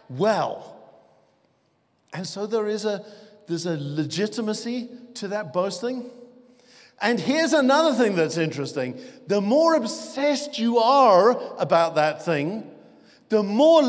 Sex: male